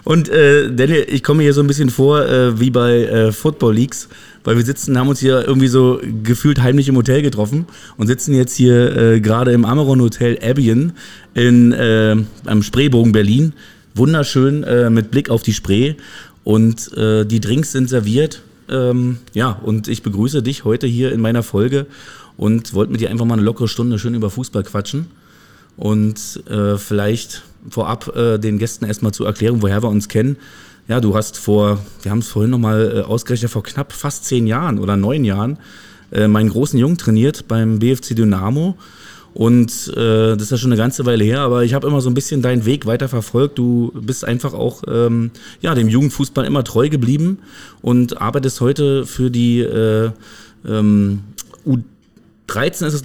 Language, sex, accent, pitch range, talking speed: German, male, German, 110-135 Hz, 185 wpm